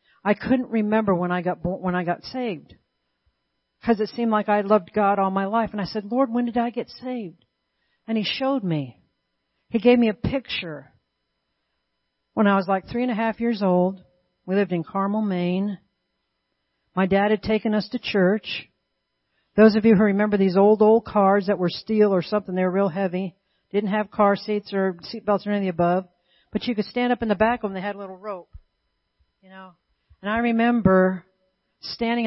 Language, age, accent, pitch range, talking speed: English, 50-69, American, 180-215 Hz, 205 wpm